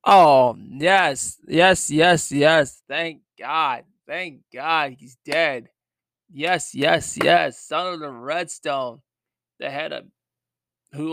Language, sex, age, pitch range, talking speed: English, male, 20-39, 115-145 Hz, 120 wpm